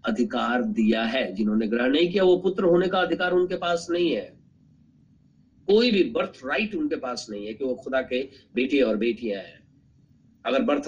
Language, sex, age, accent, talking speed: Hindi, male, 50-69, native, 190 wpm